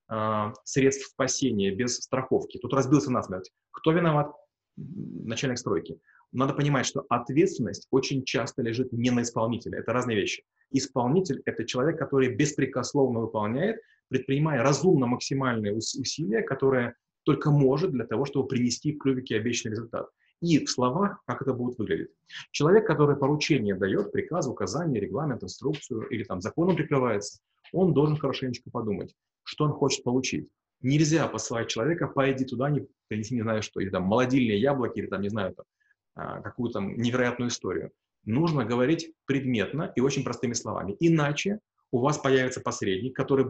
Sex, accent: male, native